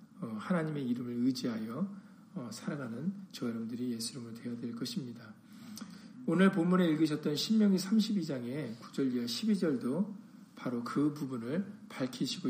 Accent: native